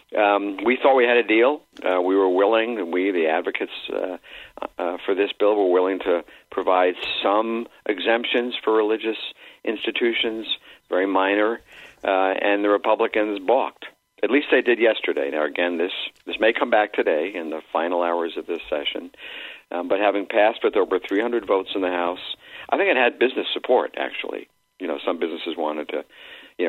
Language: English